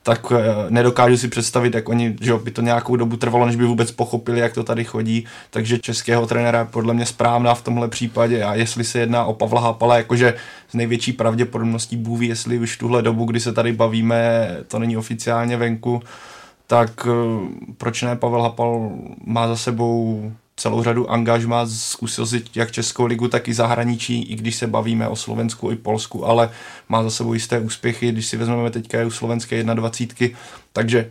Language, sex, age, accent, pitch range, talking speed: Czech, male, 20-39, native, 115-120 Hz, 185 wpm